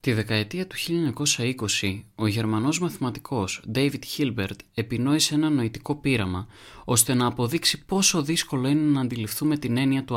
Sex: male